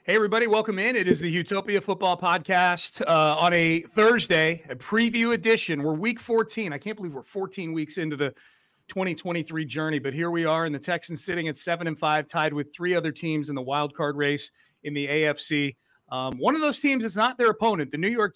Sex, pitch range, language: male, 150-185 Hz, English